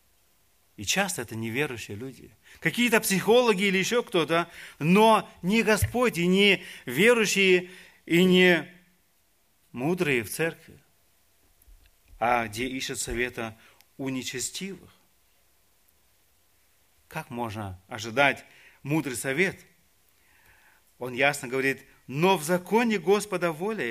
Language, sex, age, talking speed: Russian, male, 40-59, 100 wpm